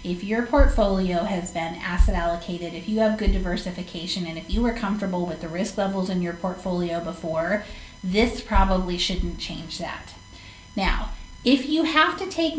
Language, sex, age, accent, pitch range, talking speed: English, female, 30-49, American, 185-240 Hz, 170 wpm